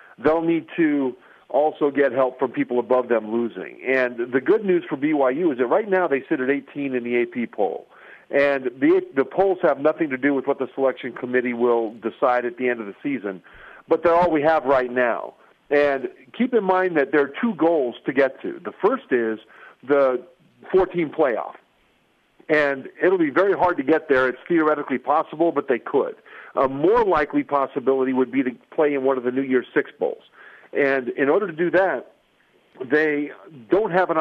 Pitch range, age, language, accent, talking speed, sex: 125-170 Hz, 50-69, English, American, 200 wpm, male